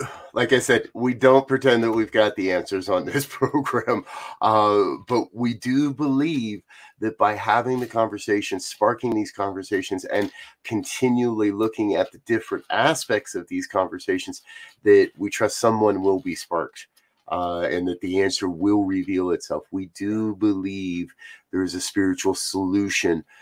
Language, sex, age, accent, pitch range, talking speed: English, male, 30-49, American, 100-125 Hz, 155 wpm